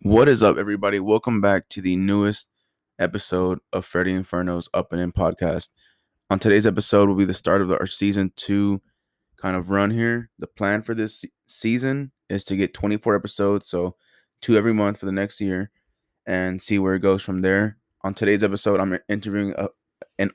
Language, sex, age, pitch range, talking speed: English, male, 20-39, 95-105 Hz, 190 wpm